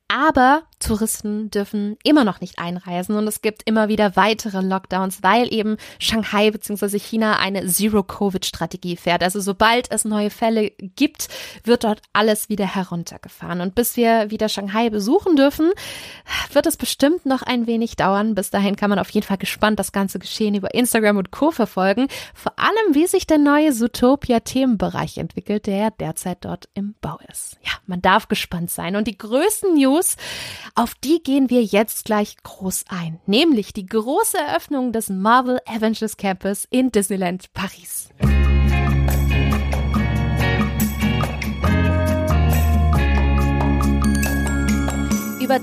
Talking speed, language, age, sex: 140 wpm, German, 20-39, female